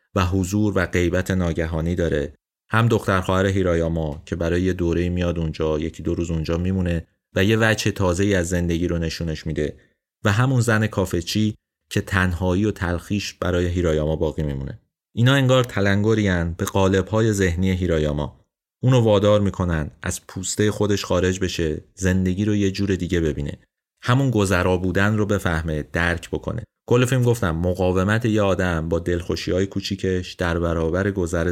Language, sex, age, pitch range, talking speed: Persian, male, 30-49, 85-105 Hz, 155 wpm